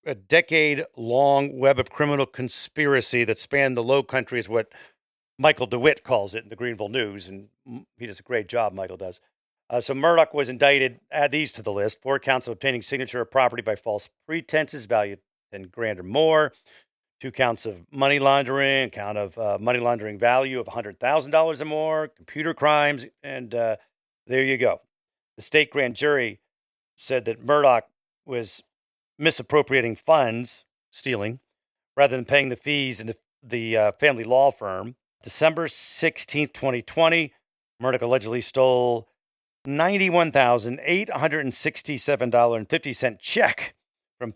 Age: 40-59